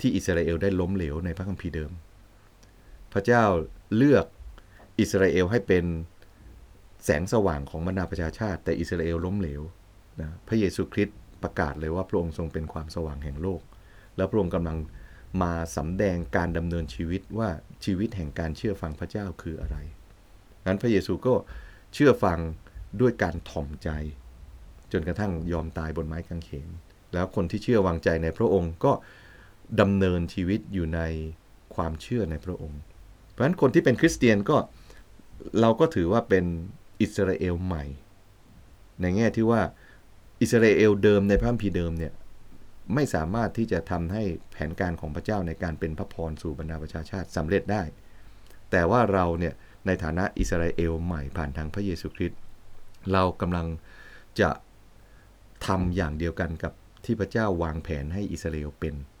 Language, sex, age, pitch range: English, male, 30-49, 80-100 Hz